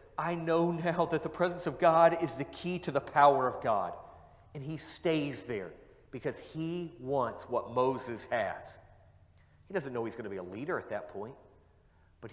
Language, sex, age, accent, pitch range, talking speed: English, male, 40-59, American, 130-170 Hz, 190 wpm